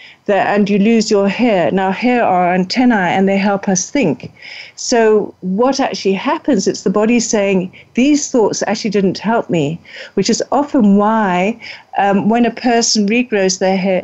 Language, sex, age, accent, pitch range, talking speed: English, female, 50-69, British, 190-230 Hz, 165 wpm